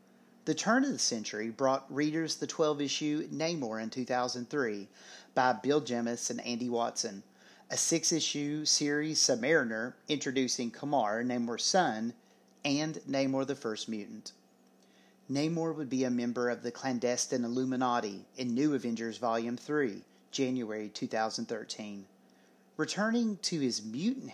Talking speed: 125 wpm